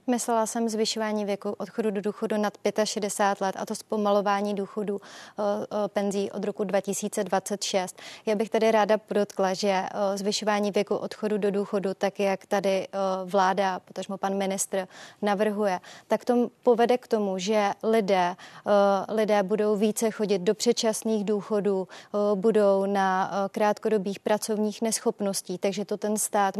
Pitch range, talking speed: 195-215 Hz, 135 wpm